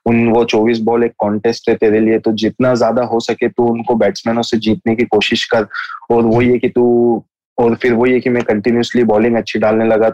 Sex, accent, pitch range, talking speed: male, native, 110-120 Hz, 230 wpm